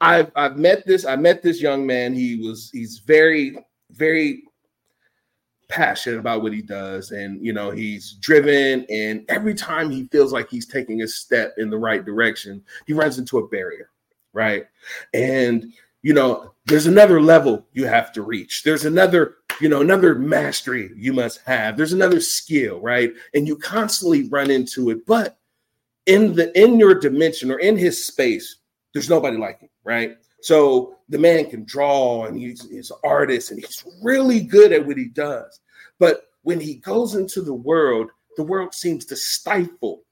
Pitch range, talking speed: 125-190 Hz, 175 wpm